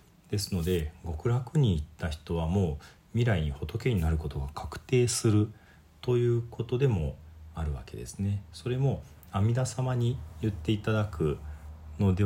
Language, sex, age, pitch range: Japanese, male, 40-59, 80-110 Hz